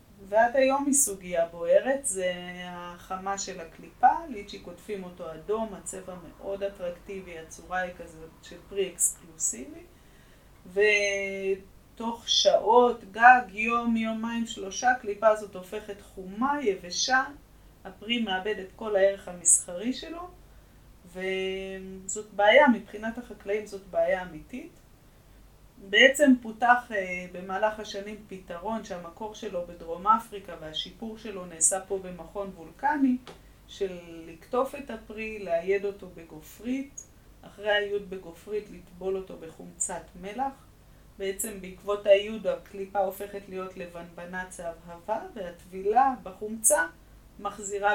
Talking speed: 110 wpm